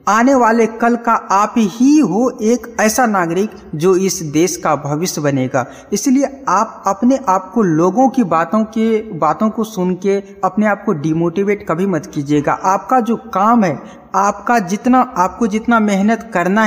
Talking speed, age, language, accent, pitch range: 165 wpm, 50-69, Hindi, native, 175-225 Hz